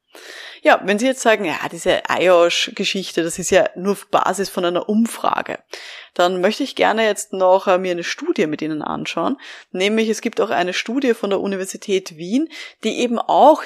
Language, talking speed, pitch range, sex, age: German, 185 wpm, 180-230 Hz, female, 20-39